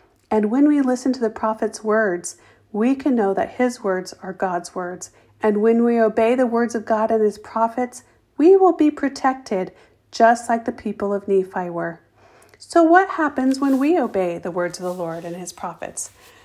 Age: 50-69